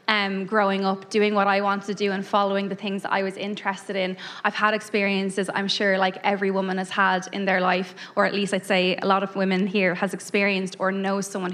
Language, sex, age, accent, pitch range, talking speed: English, female, 20-39, Irish, 185-210 Hz, 240 wpm